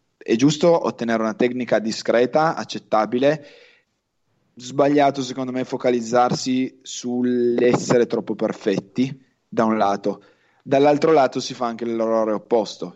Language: Italian